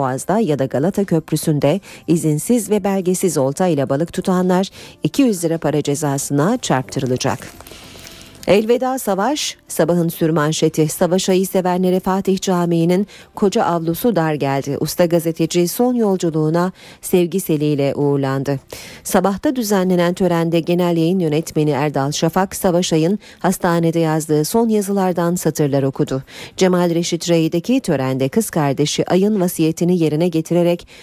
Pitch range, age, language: 155-190 Hz, 40-59, Turkish